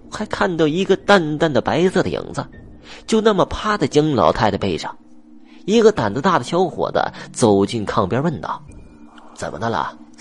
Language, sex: Chinese, male